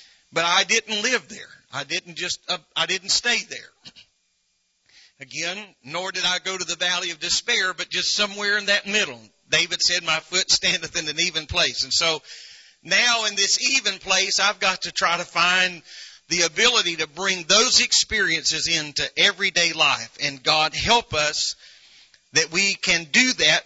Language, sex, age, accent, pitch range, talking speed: English, male, 40-59, American, 160-195 Hz, 175 wpm